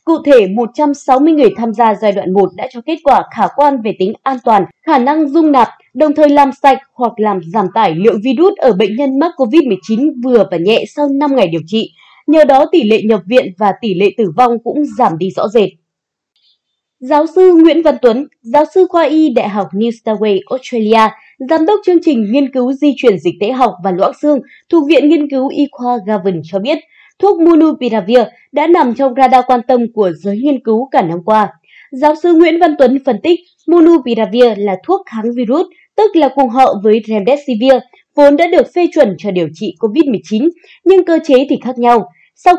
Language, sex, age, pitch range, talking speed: Vietnamese, female, 20-39, 220-305 Hz, 210 wpm